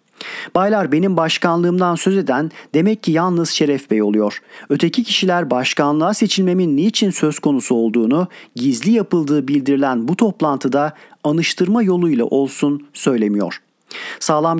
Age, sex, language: 40-59, male, Turkish